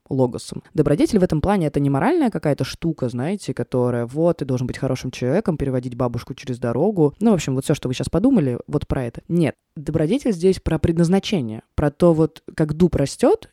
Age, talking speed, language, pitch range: 20-39, 200 wpm, Russian, 135-170 Hz